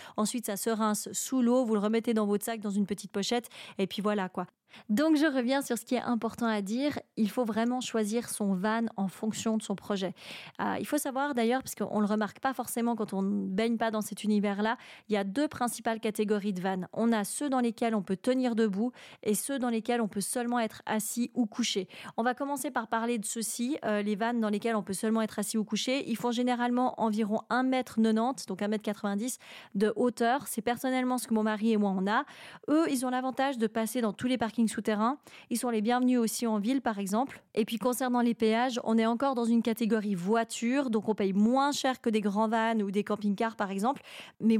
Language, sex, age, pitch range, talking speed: French, female, 30-49, 215-245 Hz, 235 wpm